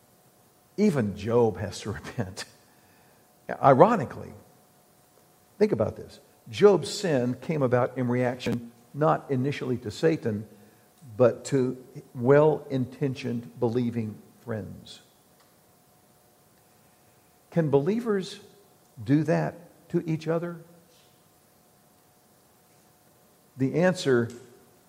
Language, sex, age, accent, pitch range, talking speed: English, male, 50-69, American, 115-145 Hz, 80 wpm